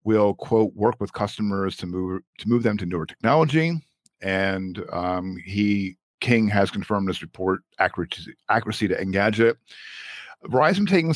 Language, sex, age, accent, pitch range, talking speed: English, male, 50-69, American, 95-120 Hz, 145 wpm